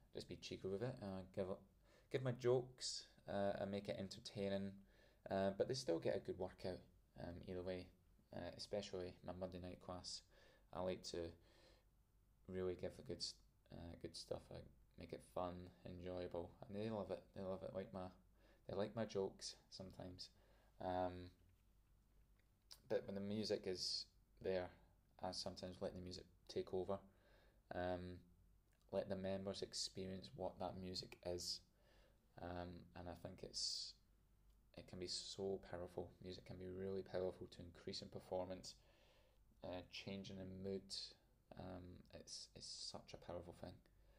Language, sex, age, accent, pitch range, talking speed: English, male, 20-39, British, 90-105 Hz, 155 wpm